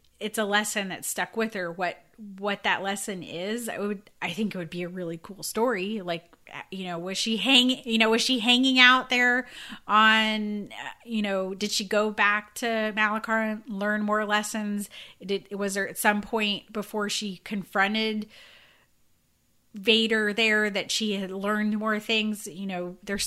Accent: American